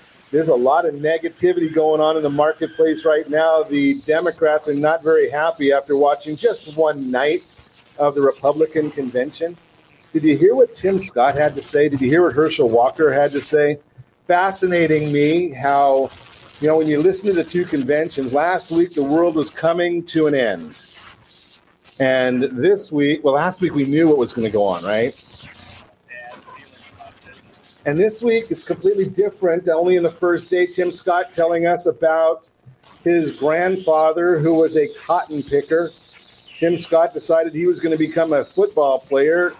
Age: 40-59